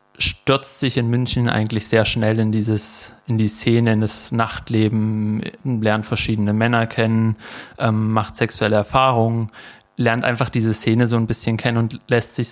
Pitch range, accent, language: 110-120 Hz, German, German